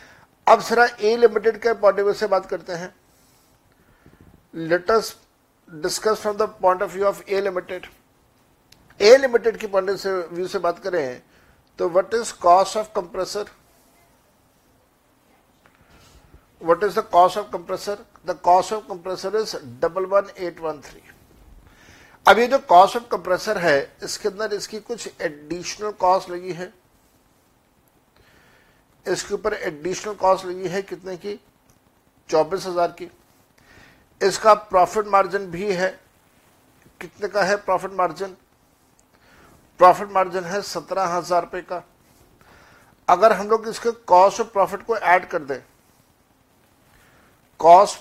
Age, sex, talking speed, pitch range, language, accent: 60-79, male, 125 wpm, 175-205 Hz, Hindi, native